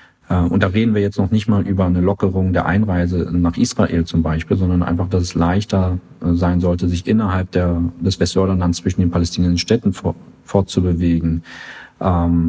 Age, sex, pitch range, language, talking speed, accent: 40-59, male, 90-105 Hz, German, 170 wpm, German